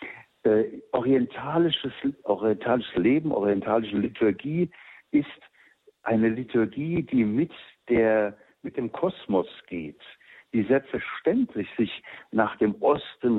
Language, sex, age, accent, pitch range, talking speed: German, male, 60-79, German, 100-130 Hz, 100 wpm